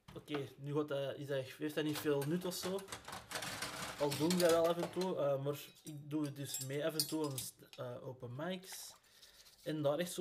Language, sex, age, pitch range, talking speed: Dutch, male, 20-39, 145-175 Hz, 240 wpm